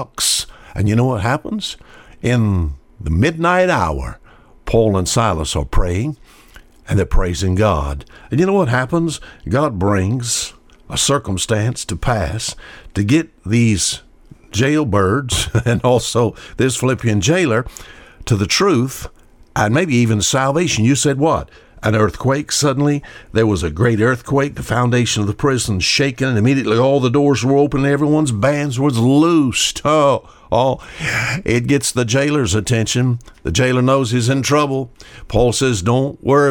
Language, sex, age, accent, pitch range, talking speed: English, male, 60-79, American, 105-135 Hz, 150 wpm